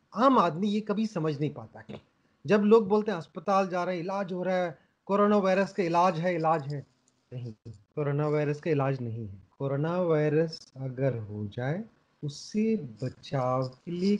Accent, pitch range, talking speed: Indian, 150-205 Hz, 165 wpm